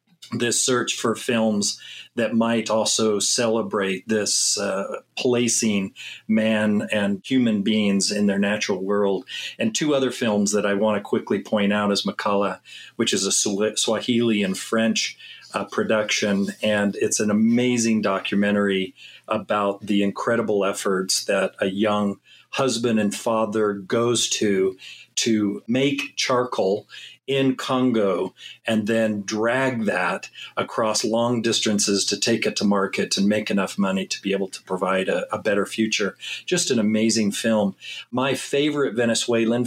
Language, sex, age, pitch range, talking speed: English, male, 40-59, 100-120 Hz, 140 wpm